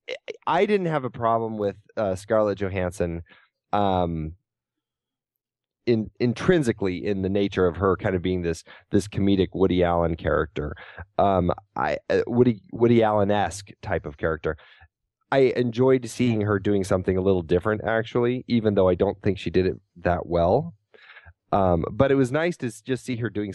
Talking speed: 170 wpm